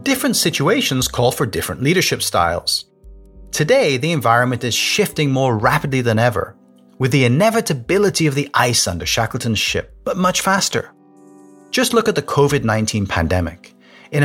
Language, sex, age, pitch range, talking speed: English, male, 30-49, 110-165 Hz, 145 wpm